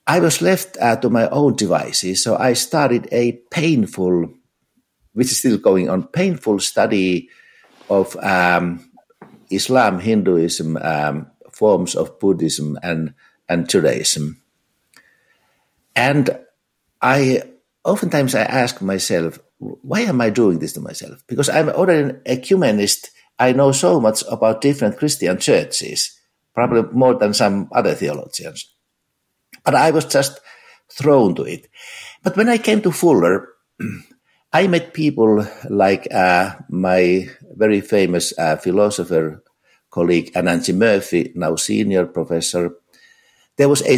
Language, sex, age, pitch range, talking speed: English, male, 60-79, 90-140 Hz, 130 wpm